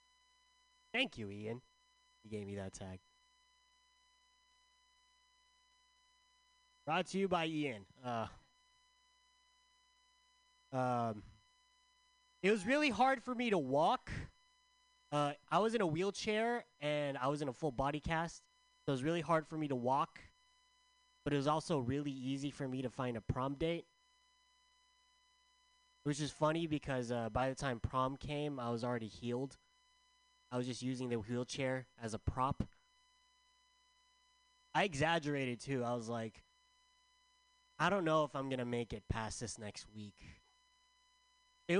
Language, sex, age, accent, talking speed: English, male, 20-39, American, 145 wpm